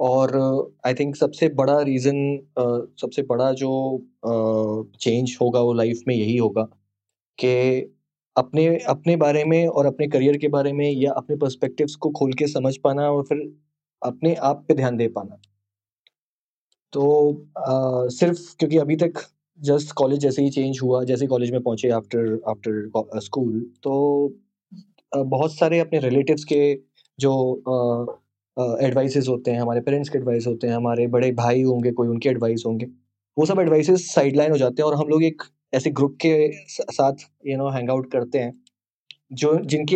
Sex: male